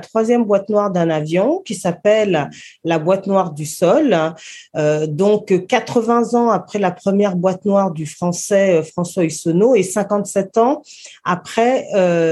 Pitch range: 170-225 Hz